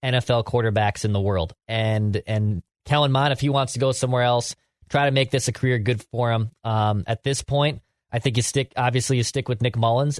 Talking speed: 225 wpm